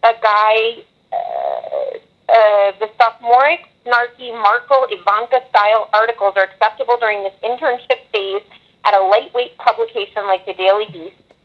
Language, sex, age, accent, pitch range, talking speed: English, female, 30-49, American, 195-245 Hz, 125 wpm